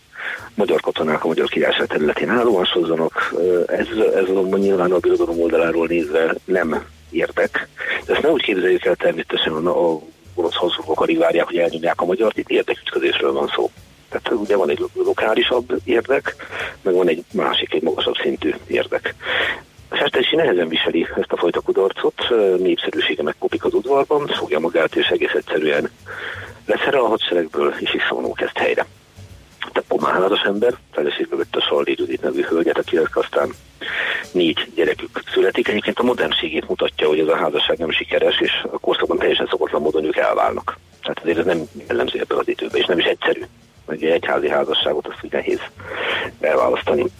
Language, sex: Hungarian, male